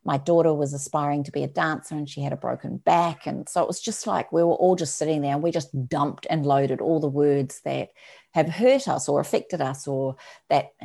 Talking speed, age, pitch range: 245 wpm, 40-59, 145-170 Hz